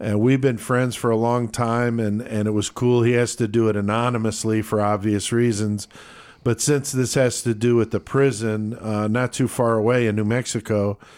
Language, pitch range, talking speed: English, 105-120 Hz, 210 wpm